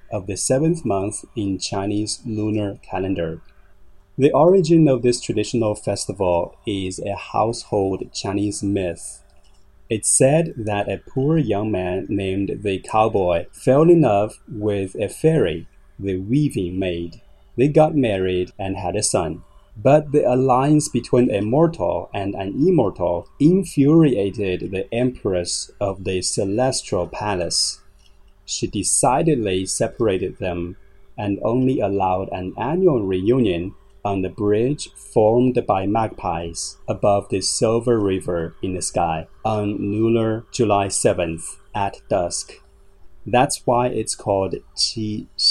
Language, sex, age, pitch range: Chinese, male, 30-49, 95-120 Hz